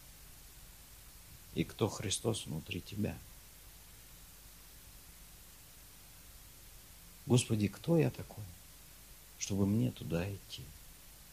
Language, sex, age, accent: Russian, male, 50-69, native